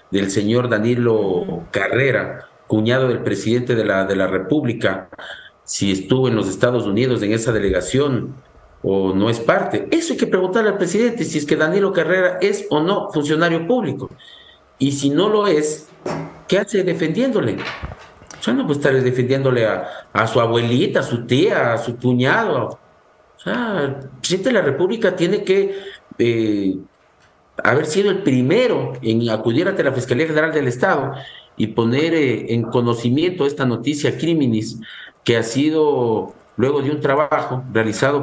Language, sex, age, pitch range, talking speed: English, male, 50-69, 115-160 Hz, 160 wpm